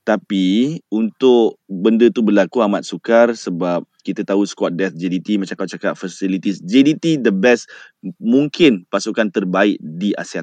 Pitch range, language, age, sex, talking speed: 90-120 Hz, Malay, 20-39, male, 145 wpm